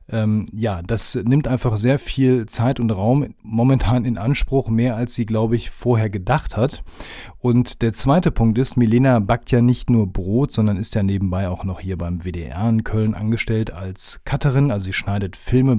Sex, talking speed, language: male, 185 wpm, German